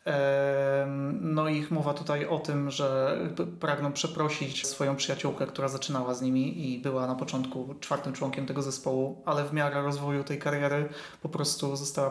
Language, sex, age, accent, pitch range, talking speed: Polish, male, 30-49, native, 140-160 Hz, 160 wpm